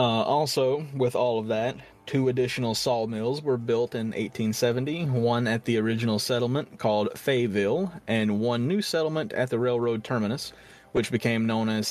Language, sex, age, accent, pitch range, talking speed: English, male, 30-49, American, 110-130 Hz, 160 wpm